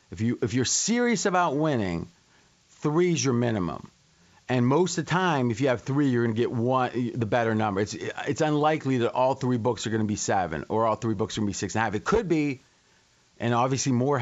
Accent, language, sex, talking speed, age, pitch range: American, English, male, 230 wpm, 40-59, 110-145 Hz